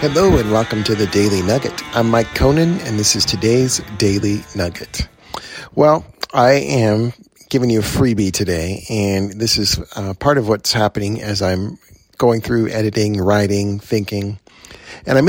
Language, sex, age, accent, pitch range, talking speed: English, male, 40-59, American, 100-120 Hz, 160 wpm